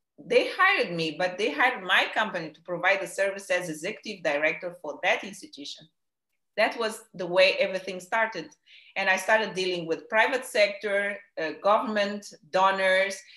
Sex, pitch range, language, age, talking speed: female, 175-215 Hz, English, 30-49, 155 wpm